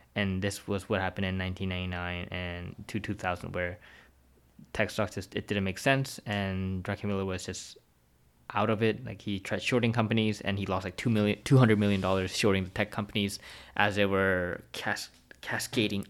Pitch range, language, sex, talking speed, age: 95-120 Hz, English, male, 180 wpm, 20-39